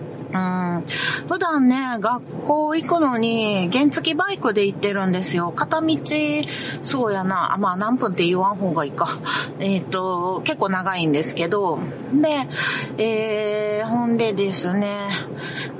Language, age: Japanese, 40-59